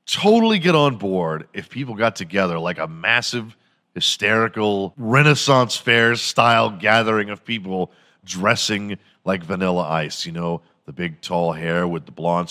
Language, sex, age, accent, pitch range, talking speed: English, male, 40-59, American, 100-130 Hz, 150 wpm